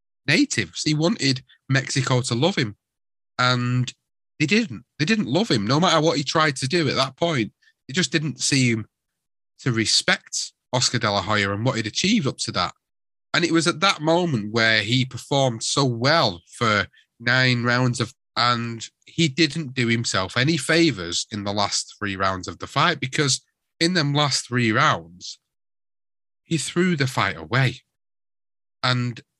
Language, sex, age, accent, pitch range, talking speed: English, male, 30-49, British, 115-150 Hz, 170 wpm